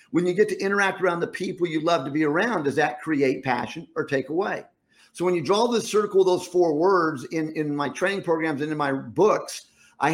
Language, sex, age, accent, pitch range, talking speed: English, male, 50-69, American, 145-185 Hz, 235 wpm